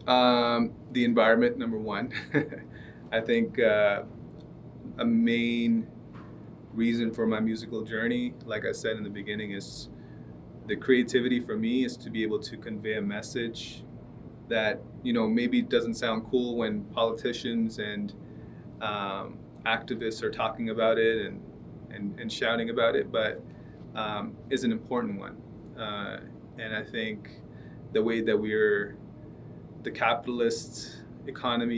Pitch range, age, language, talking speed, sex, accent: 105-120 Hz, 30-49, English, 140 wpm, male, American